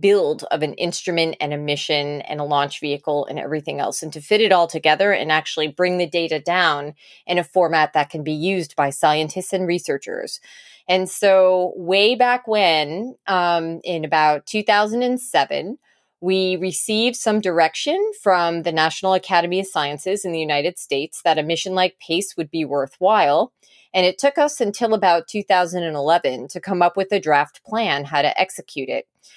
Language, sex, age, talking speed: English, female, 20-39, 175 wpm